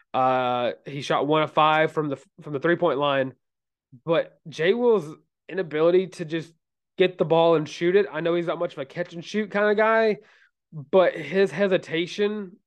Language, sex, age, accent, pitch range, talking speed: English, male, 20-39, American, 155-200 Hz, 190 wpm